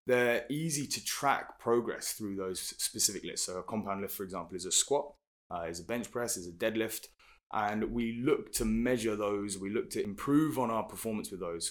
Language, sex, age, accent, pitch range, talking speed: English, male, 20-39, British, 100-120 Hz, 210 wpm